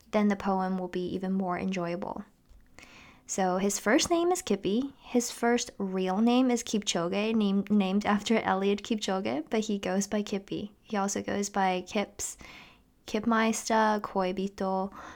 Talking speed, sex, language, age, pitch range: 150 wpm, female, English, 20-39, 190-230 Hz